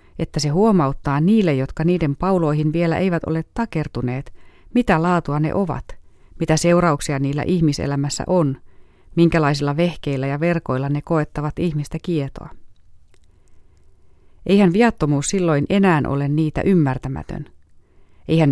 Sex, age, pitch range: female, 30-49, 130-165 Hz